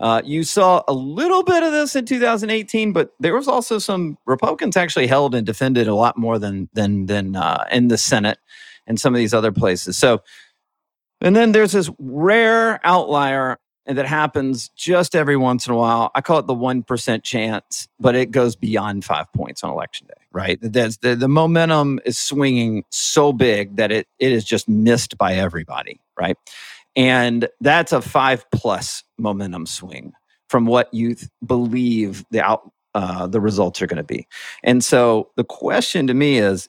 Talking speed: 185 wpm